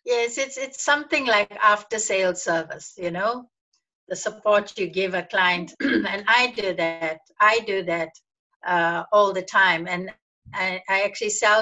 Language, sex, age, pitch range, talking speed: English, female, 60-79, 170-210 Hz, 160 wpm